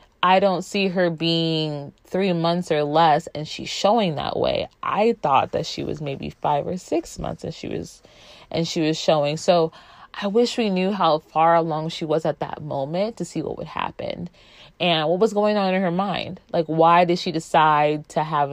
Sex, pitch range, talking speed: female, 150-185 Hz, 205 wpm